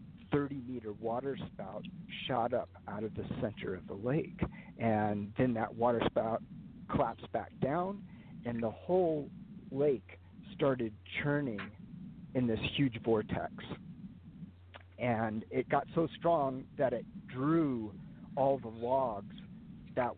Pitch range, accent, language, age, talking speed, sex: 115-160 Hz, American, English, 50-69, 125 wpm, male